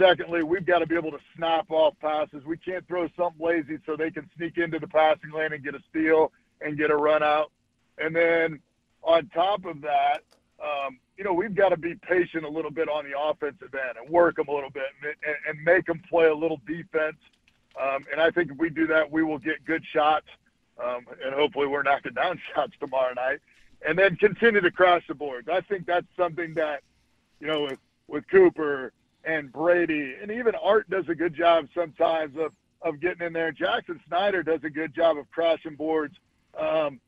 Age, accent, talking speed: 50-69, American, 215 wpm